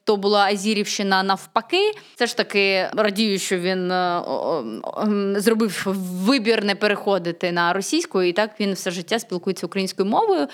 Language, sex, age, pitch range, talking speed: Ukrainian, female, 20-39, 185-245 Hz, 135 wpm